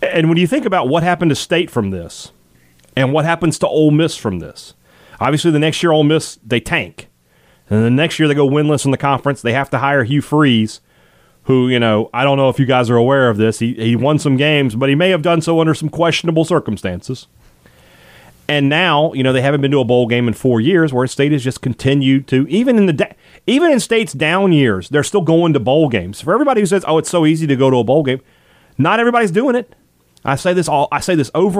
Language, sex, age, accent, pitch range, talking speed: English, male, 30-49, American, 100-155 Hz, 250 wpm